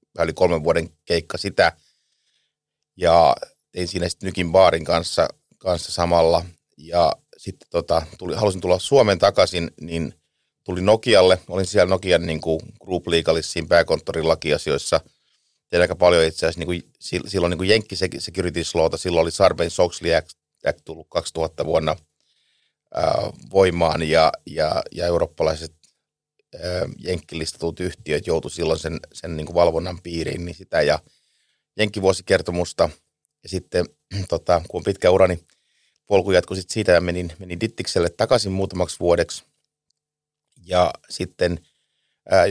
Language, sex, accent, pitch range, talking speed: Finnish, male, native, 85-95 Hz, 125 wpm